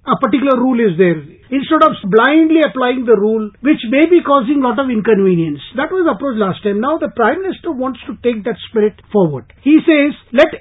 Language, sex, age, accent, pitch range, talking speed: English, male, 50-69, Indian, 205-270 Hz, 205 wpm